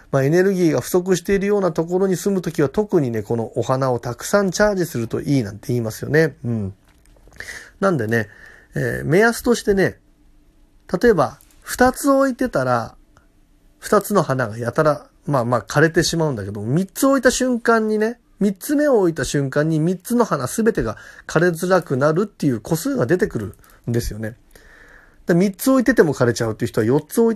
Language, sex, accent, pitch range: Japanese, male, native, 120-195 Hz